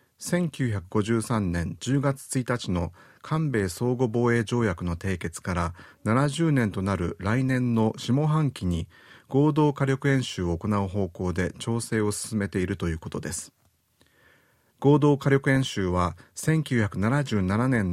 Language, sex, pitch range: Japanese, male, 95-135 Hz